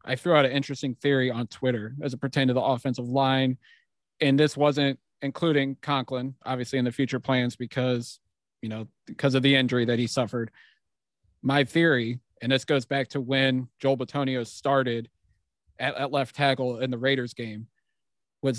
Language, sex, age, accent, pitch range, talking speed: English, male, 30-49, American, 125-145 Hz, 180 wpm